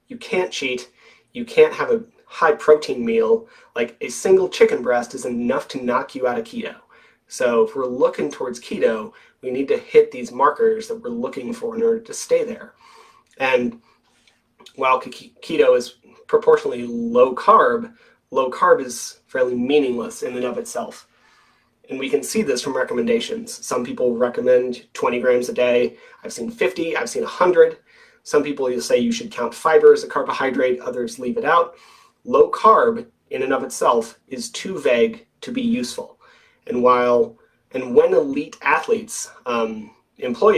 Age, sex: 30-49, male